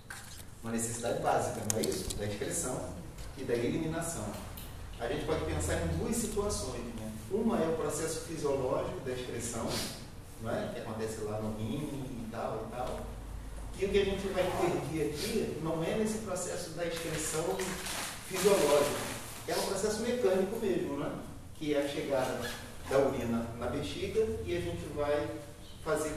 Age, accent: 40-59, Brazilian